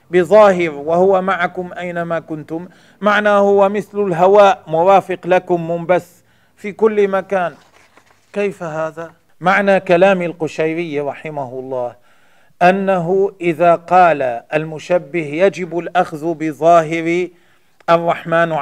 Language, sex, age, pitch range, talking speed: Arabic, male, 40-59, 150-180 Hz, 95 wpm